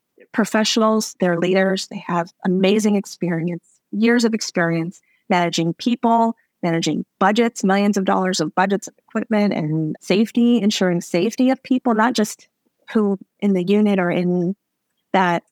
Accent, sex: American, female